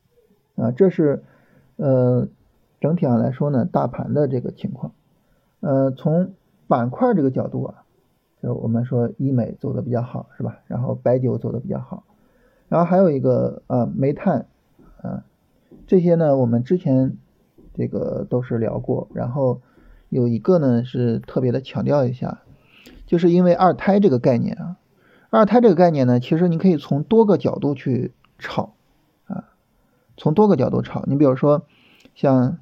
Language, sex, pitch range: Chinese, male, 130-190 Hz